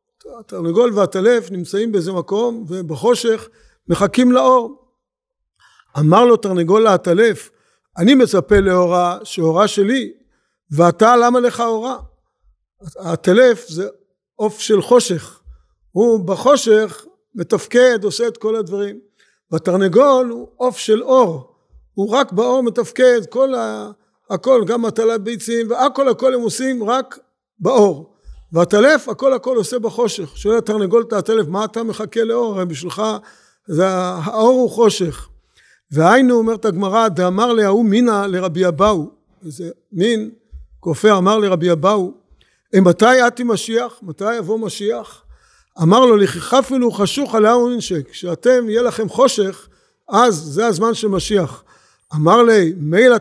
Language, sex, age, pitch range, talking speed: Hebrew, male, 50-69, 185-240 Hz, 125 wpm